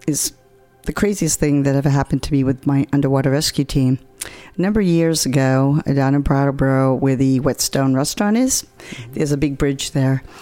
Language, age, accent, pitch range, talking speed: English, 50-69, American, 135-160 Hz, 185 wpm